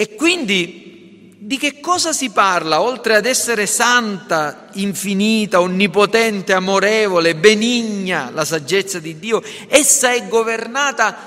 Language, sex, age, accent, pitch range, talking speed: Italian, male, 50-69, native, 175-235 Hz, 115 wpm